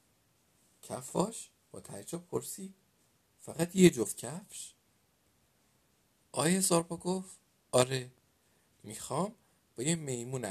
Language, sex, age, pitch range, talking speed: Persian, male, 50-69, 110-150 Hz, 90 wpm